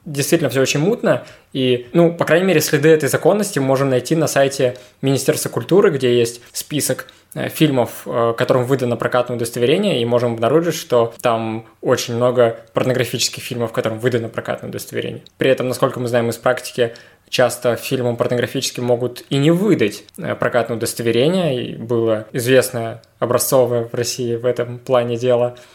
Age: 20-39